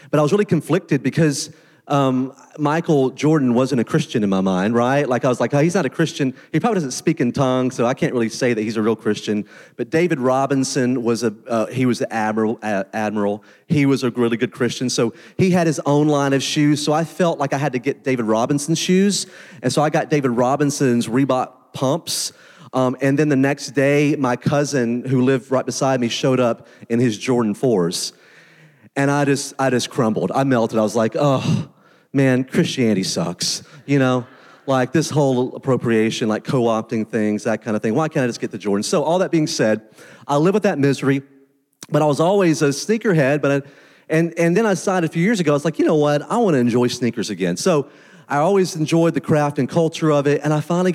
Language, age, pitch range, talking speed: English, 30-49, 125-160 Hz, 225 wpm